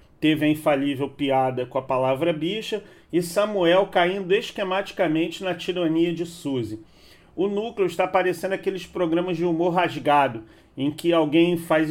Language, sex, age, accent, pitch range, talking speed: English, male, 40-59, Brazilian, 150-180 Hz, 145 wpm